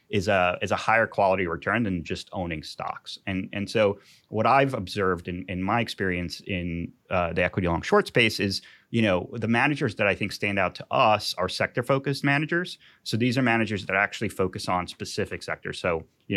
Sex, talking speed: male, 205 wpm